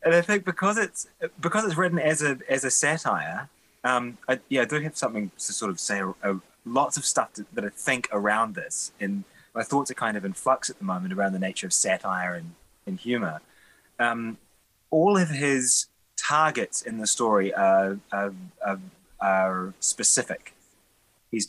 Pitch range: 95-130 Hz